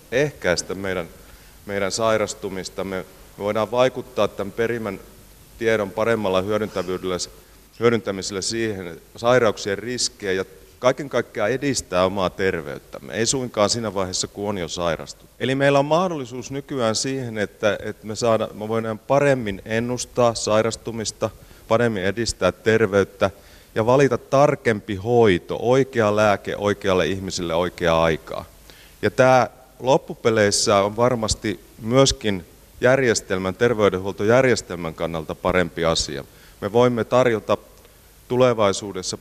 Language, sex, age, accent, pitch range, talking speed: Finnish, male, 30-49, native, 95-120 Hz, 110 wpm